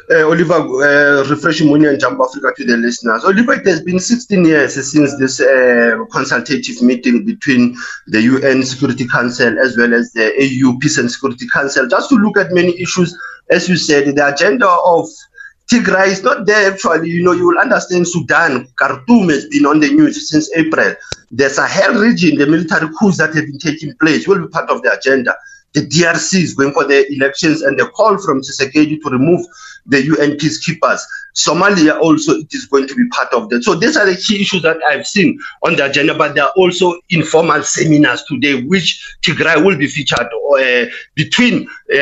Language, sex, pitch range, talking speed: English, male, 145-195 Hz, 195 wpm